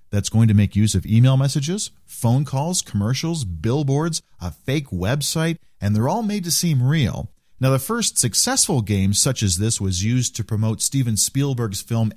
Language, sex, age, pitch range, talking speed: English, male, 40-59, 105-145 Hz, 180 wpm